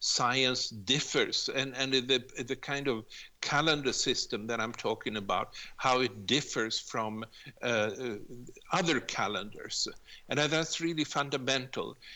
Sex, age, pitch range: male, 60-79, 120-155 Hz